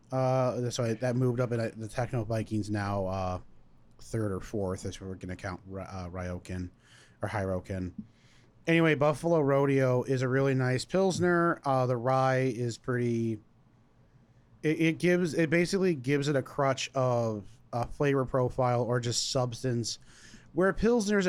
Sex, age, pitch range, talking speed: male, 30-49, 105-130 Hz, 160 wpm